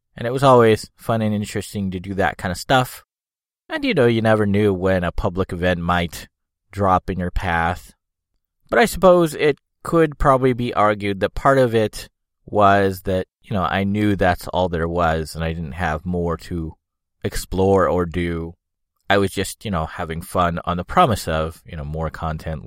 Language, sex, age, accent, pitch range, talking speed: English, male, 30-49, American, 90-115 Hz, 195 wpm